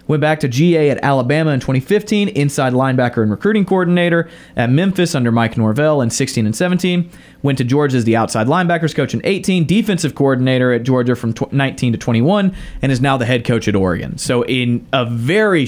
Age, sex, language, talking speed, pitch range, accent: 30-49, male, English, 200 wpm, 120-155 Hz, American